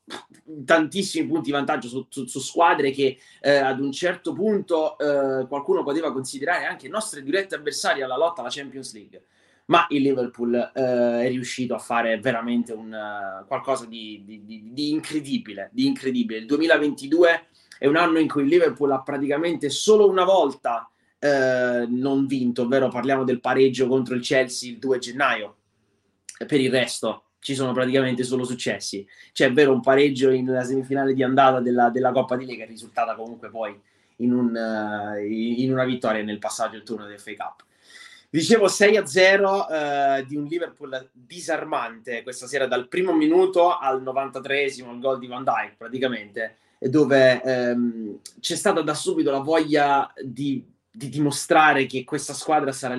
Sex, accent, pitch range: male, native, 120-145 Hz